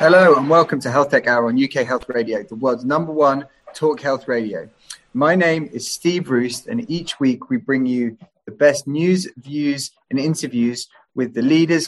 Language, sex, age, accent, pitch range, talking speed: English, male, 30-49, British, 130-155 Hz, 190 wpm